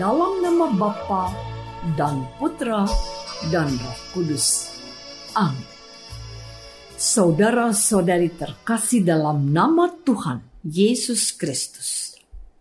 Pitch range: 180-280 Hz